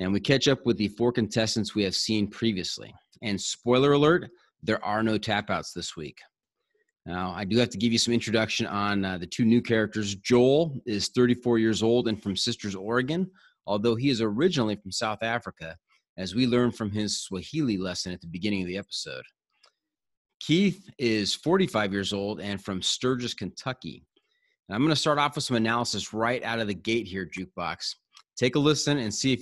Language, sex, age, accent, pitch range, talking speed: English, male, 30-49, American, 100-130 Hz, 195 wpm